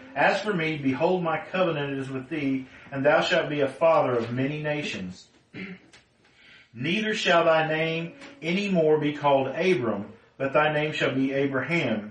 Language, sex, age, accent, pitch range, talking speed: English, male, 40-59, American, 135-175 Hz, 165 wpm